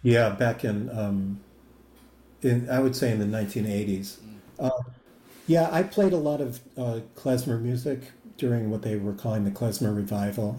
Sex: male